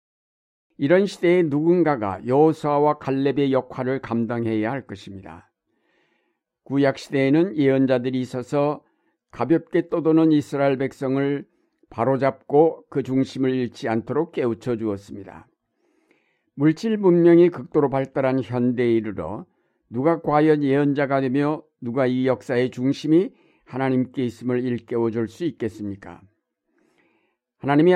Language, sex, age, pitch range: Korean, male, 60-79, 125-150 Hz